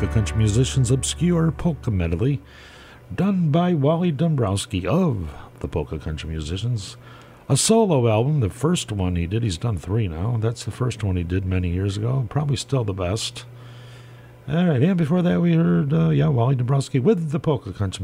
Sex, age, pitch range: male, 50-69, 100-140 Hz